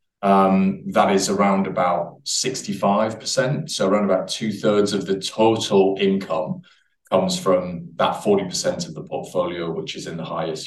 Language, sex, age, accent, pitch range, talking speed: English, male, 30-49, British, 95-155 Hz, 145 wpm